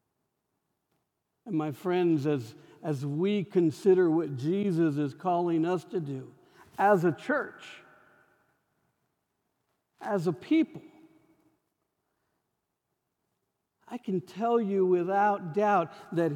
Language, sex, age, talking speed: English, male, 60-79, 95 wpm